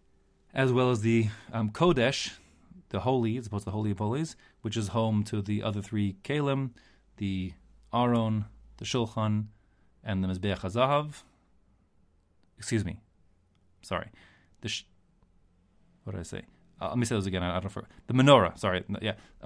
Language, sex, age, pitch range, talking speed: English, male, 30-49, 100-125 Hz, 165 wpm